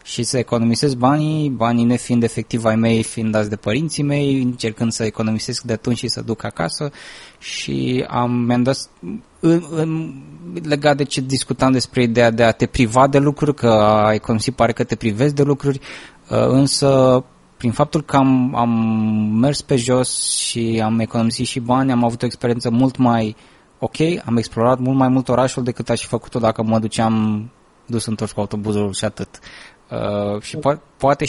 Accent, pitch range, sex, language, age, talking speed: native, 115-135 Hz, male, Romanian, 20-39, 180 wpm